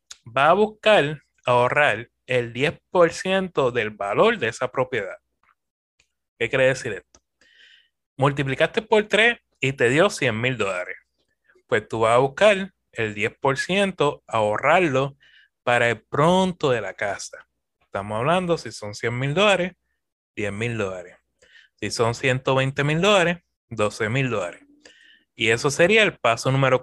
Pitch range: 120-190 Hz